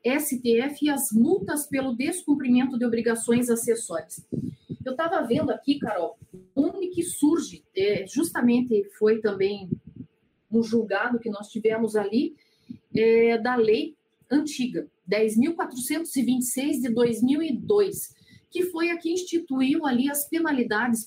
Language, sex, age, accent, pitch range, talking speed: Portuguese, female, 40-59, Brazilian, 220-285 Hz, 115 wpm